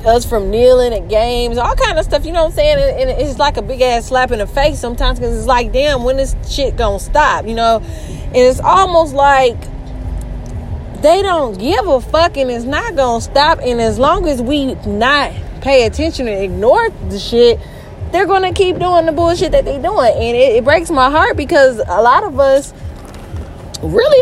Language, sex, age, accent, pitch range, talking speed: English, female, 20-39, American, 245-315 Hz, 210 wpm